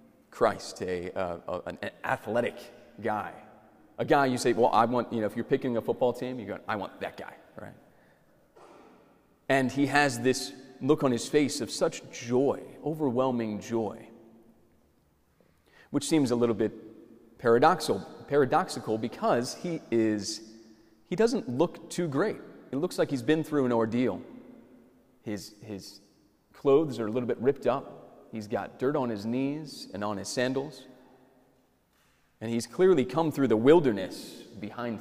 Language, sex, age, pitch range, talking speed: English, male, 30-49, 110-140 Hz, 155 wpm